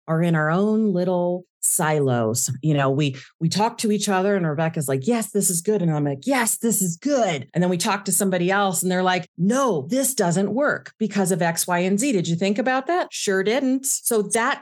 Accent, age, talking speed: American, 40-59, 235 wpm